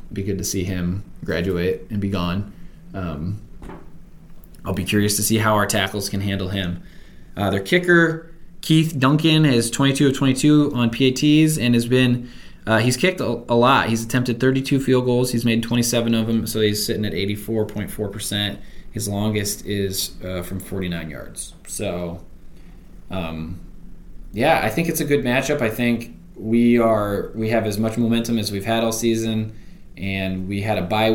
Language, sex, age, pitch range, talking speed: English, male, 20-39, 100-120 Hz, 170 wpm